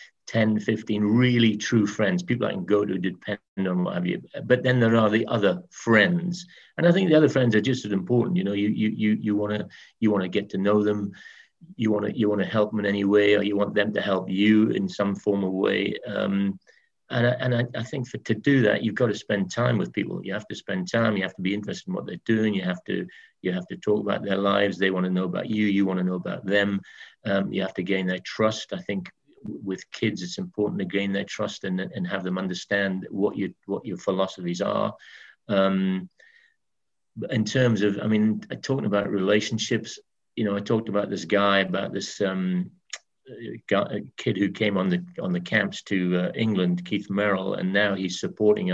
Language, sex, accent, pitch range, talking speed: English, male, British, 95-115 Hz, 230 wpm